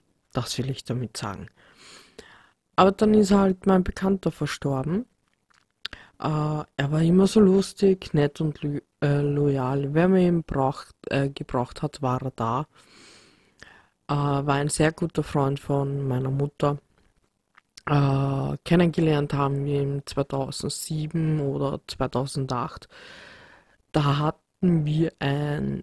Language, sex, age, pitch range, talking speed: German, female, 20-39, 135-160 Hz, 120 wpm